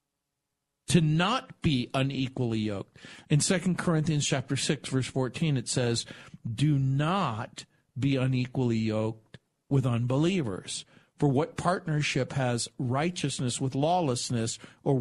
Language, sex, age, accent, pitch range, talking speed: English, male, 50-69, American, 125-150 Hz, 110 wpm